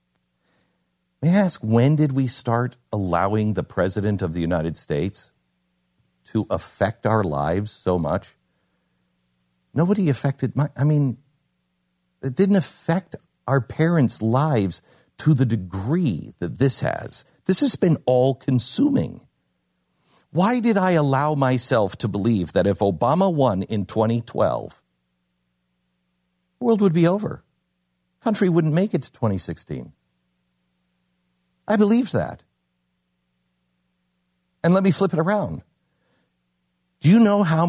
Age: 50-69